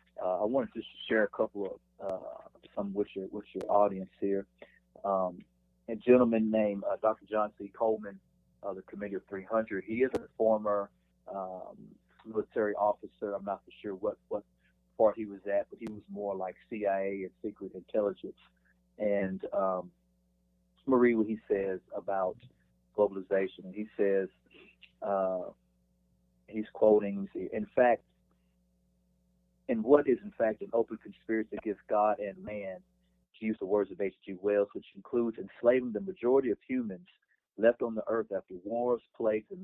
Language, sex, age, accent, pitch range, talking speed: English, male, 40-59, American, 95-110 Hz, 155 wpm